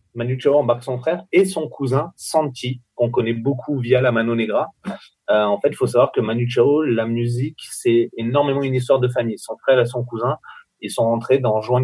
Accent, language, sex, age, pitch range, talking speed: French, French, male, 30-49, 115-150 Hz, 220 wpm